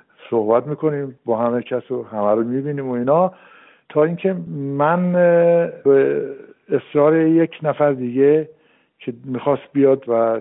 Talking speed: 125 wpm